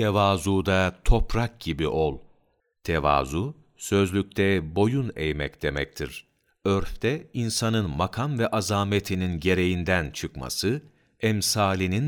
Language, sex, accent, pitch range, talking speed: Turkish, male, native, 90-120 Hz, 90 wpm